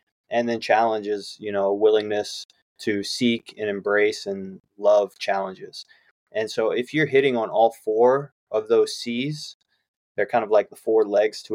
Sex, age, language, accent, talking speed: male, 20-39, English, American, 170 wpm